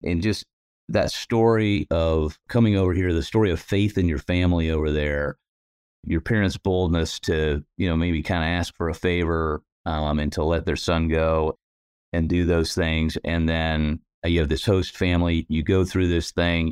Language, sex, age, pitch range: English, male, 30-49, 80-95 Hz